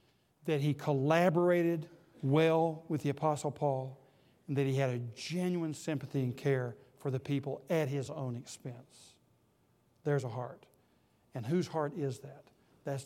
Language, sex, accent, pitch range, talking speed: English, male, American, 130-155 Hz, 150 wpm